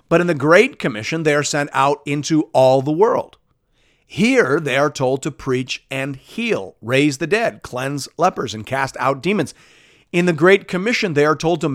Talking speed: 195 wpm